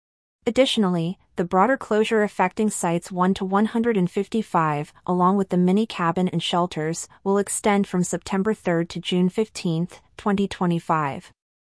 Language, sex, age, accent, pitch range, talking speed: English, female, 30-49, American, 175-215 Hz, 125 wpm